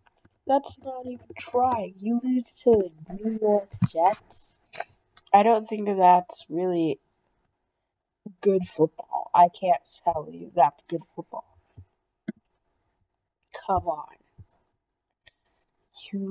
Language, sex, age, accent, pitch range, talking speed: English, female, 20-39, American, 155-215 Hz, 105 wpm